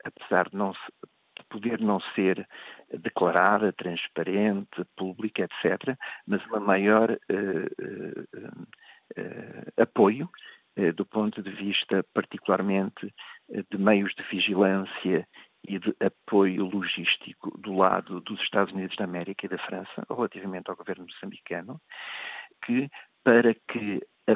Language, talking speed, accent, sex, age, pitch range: Portuguese, 125 wpm, Portuguese, male, 50-69, 95-120 Hz